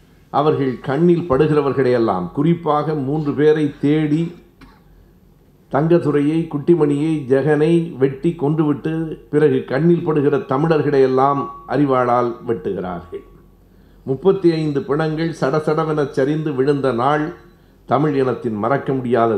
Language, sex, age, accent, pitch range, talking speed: Tamil, male, 60-79, native, 120-155 Hz, 90 wpm